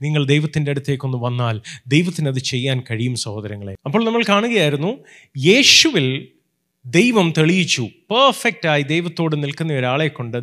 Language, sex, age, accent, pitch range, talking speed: Malayalam, male, 30-49, native, 135-190 Hz, 110 wpm